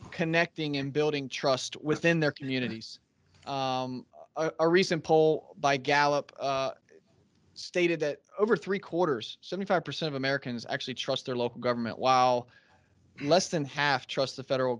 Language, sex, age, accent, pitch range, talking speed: English, male, 30-49, American, 130-160 Hz, 140 wpm